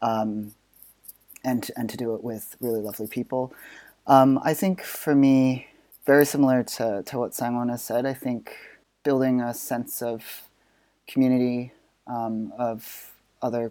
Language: English